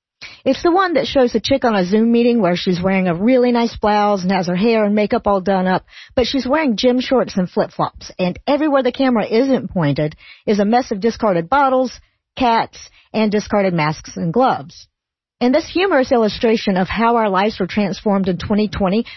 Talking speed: 200 wpm